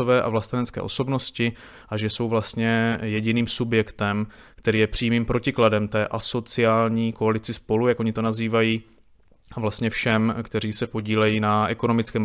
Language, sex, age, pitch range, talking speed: Czech, male, 20-39, 105-115 Hz, 140 wpm